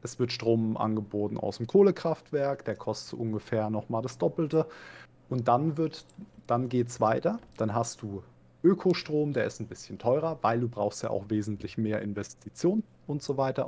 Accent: German